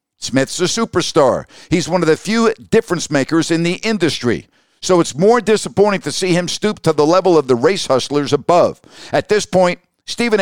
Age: 50-69